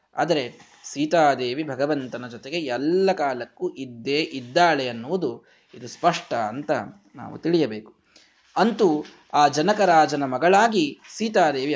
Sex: male